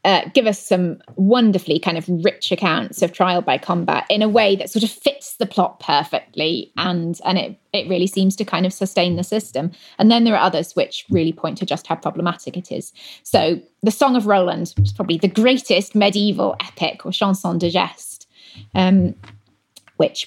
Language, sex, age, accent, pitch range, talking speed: English, female, 20-39, British, 170-210 Hz, 200 wpm